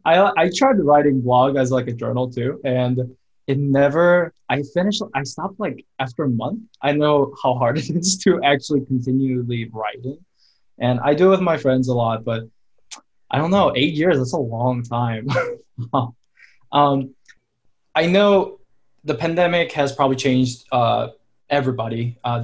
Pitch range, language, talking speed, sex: 120-145 Hz, English, 160 wpm, male